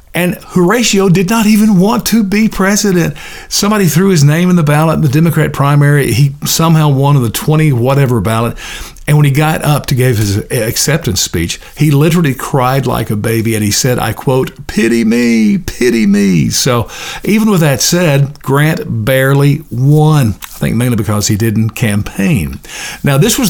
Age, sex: 50-69, male